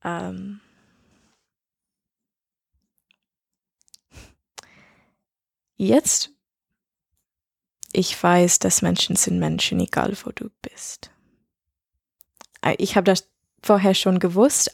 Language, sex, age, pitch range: German, female, 20-39, 175-195 Hz